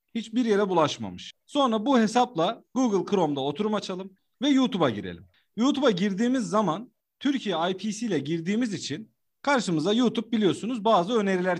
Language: Turkish